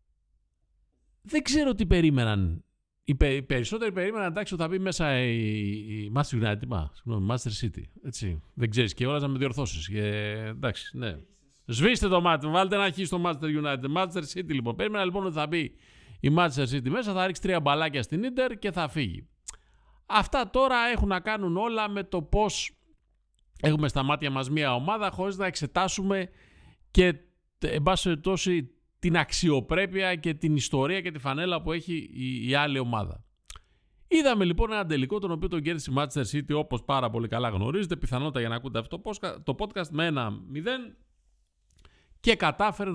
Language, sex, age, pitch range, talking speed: Greek, male, 50-69, 130-190 Hz, 175 wpm